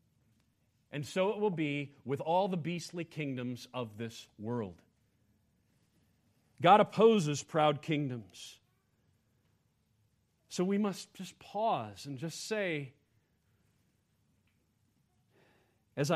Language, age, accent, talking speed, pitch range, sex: English, 40-59, American, 95 wpm, 115-185 Hz, male